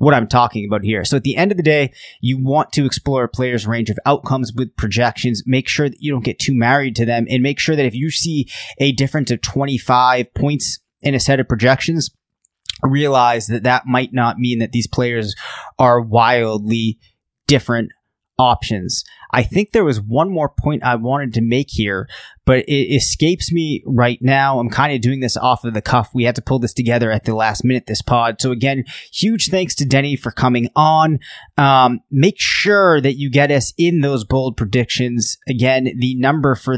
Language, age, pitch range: English, 20-39, 120-140 Hz